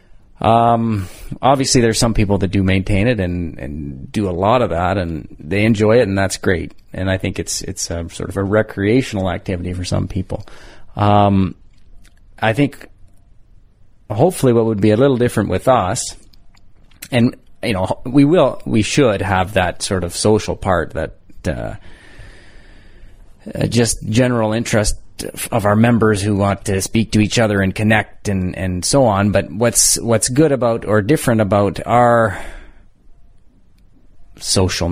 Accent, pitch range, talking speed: American, 95-110 Hz, 160 wpm